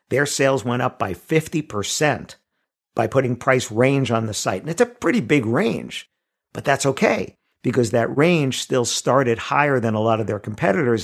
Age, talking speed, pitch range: 50-69, 185 wpm, 115-145 Hz